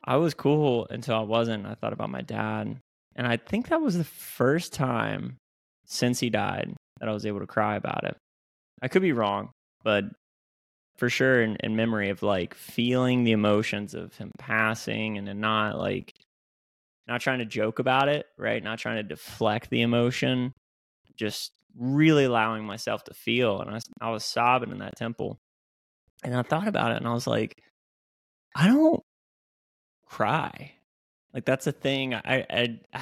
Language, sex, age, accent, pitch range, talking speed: English, male, 20-39, American, 110-130 Hz, 175 wpm